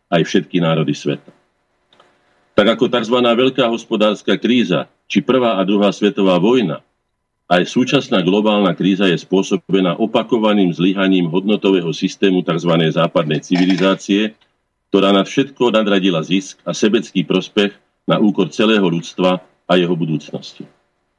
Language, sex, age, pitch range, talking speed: Slovak, male, 50-69, 90-110 Hz, 125 wpm